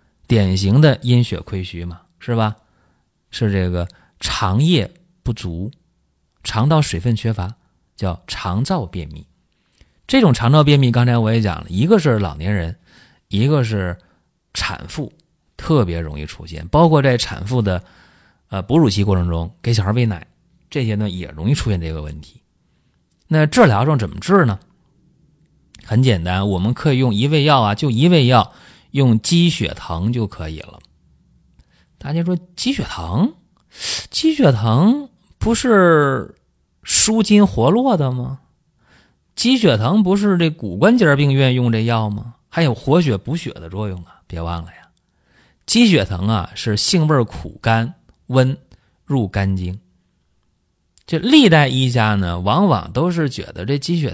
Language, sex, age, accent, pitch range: Chinese, male, 30-49, native, 95-155 Hz